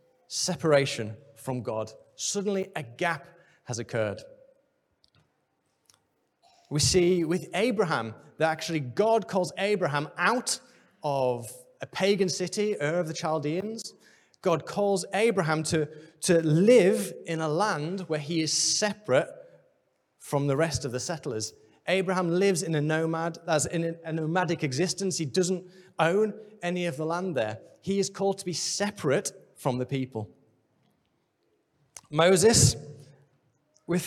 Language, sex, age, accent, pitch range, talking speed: English, male, 30-49, British, 145-190 Hz, 130 wpm